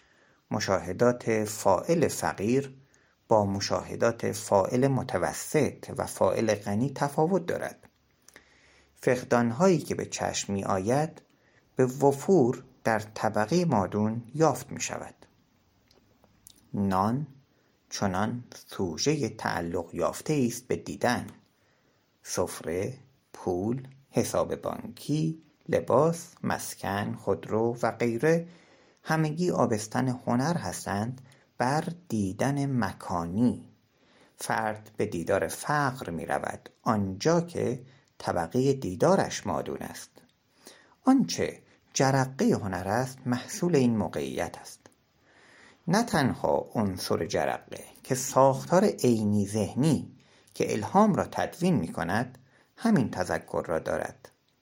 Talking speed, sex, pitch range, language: 95 wpm, male, 105-135 Hz, Persian